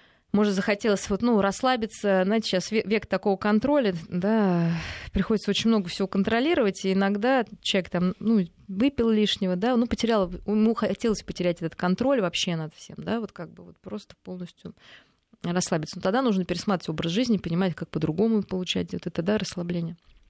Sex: female